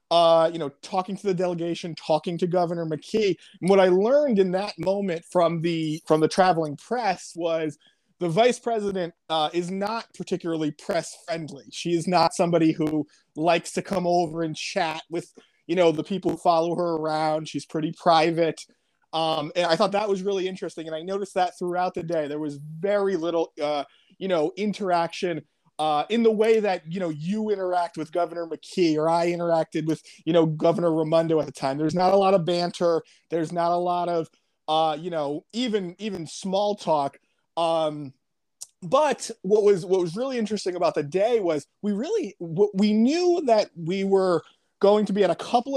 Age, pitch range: 30-49, 160-195 Hz